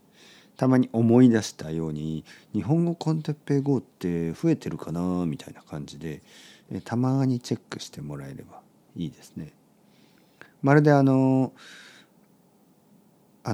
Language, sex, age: Japanese, male, 50-69